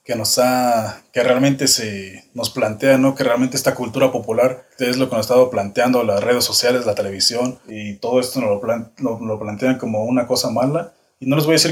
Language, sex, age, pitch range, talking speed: Spanish, male, 20-39, 110-130 Hz, 235 wpm